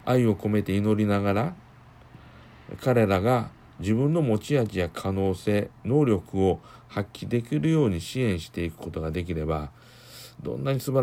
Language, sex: Japanese, male